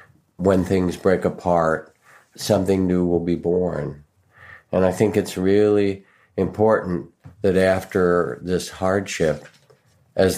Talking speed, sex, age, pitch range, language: 115 wpm, male, 50-69, 85-100 Hz, English